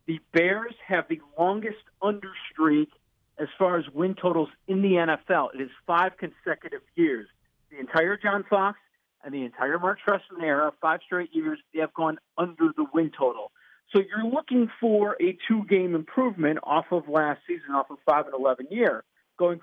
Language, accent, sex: English, American, male